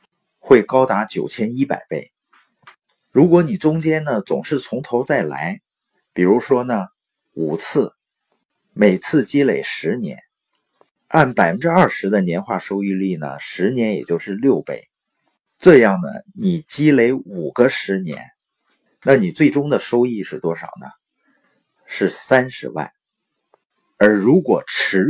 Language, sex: Chinese, male